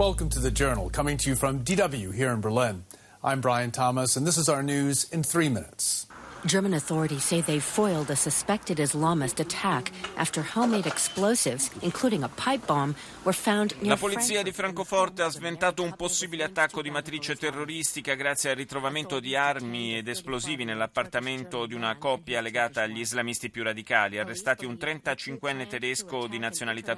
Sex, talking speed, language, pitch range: male, 125 wpm, Italian, 115-150 Hz